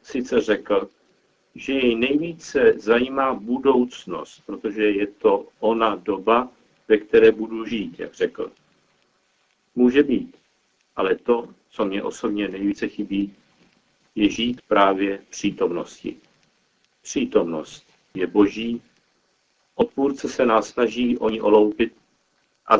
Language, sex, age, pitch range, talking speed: Czech, male, 50-69, 110-150 Hz, 115 wpm